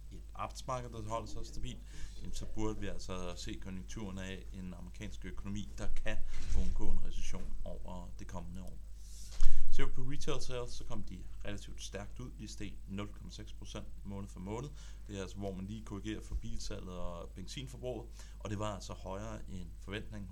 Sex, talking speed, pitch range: male, 175 wpm, 90-105 Hz